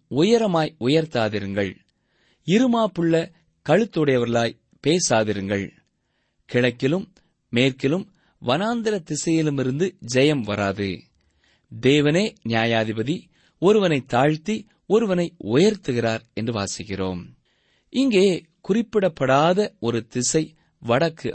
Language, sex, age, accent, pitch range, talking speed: Tamil, male, 30-49, native, 115-175 Hz, 65 wpm